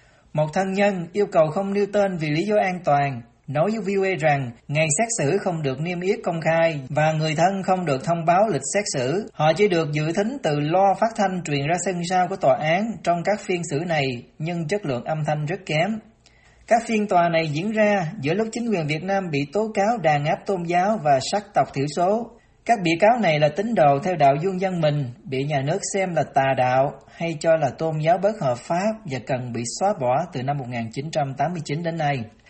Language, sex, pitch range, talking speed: Vietnamese, male, 145-200 Hz, 230 wpm